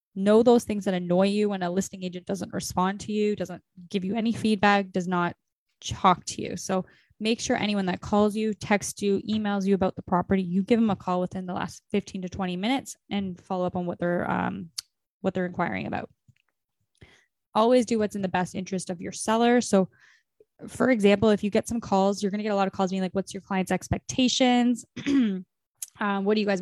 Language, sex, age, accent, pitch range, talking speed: English, female, 10-29, American, 190-220 Hz, 220 wpm